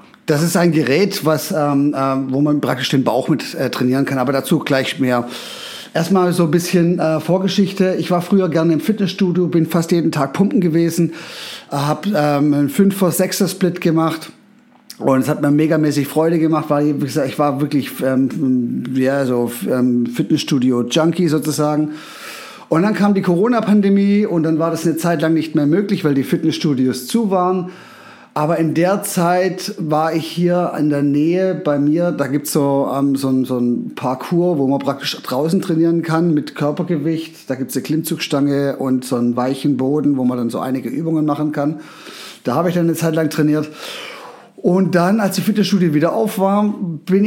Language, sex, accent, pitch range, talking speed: German, male, German, 145-180 Hz, 185 wpm